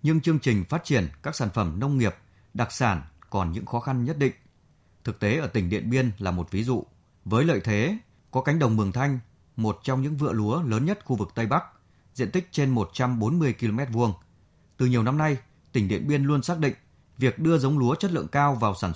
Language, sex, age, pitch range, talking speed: Vietnamese, male, 20-39, 105-140 Hz, 230 wpm